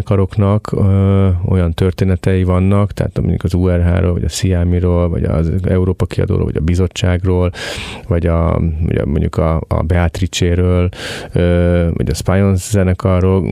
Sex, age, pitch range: male, 30-49, 90-105 Hz